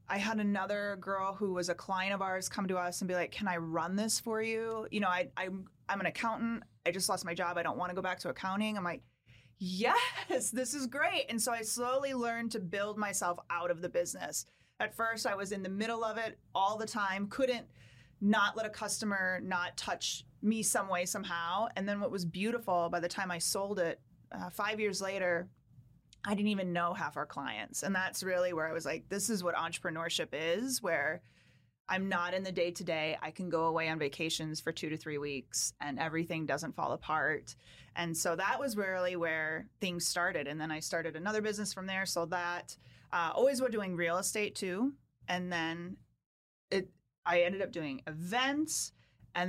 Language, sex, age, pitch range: English, female, 30-49, 170-210 Hz